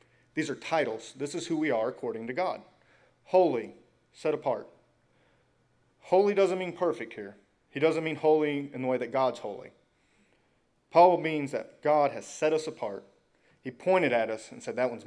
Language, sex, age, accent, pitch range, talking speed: English, male, 30-49, American, 120-160 Hz, 180 wpm